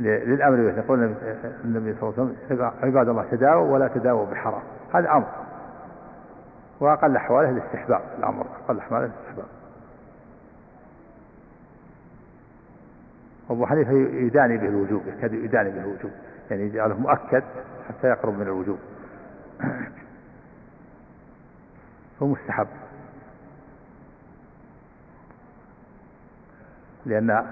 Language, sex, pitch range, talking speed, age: Arabic, male, 105-120 Hz, 90 wpm, 50-69